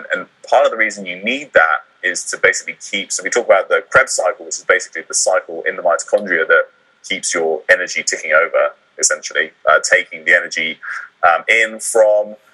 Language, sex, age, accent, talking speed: English, male, 20-39, British, 195 wpm